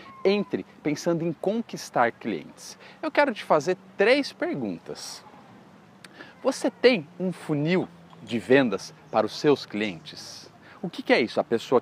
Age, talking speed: 40-59, 135 wpm